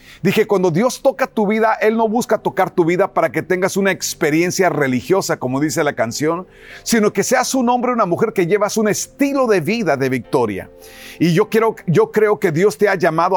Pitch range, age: 165-220 Hz, 40-59